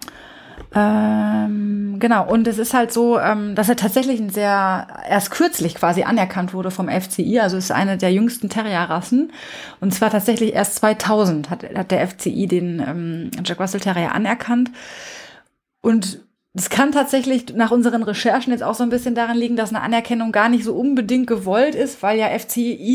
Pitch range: 190-230 Hz